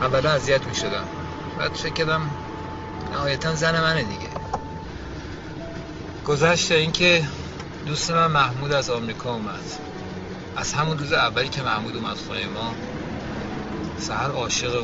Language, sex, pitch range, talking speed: Persian, male, 120-155 Hz, 120 wpm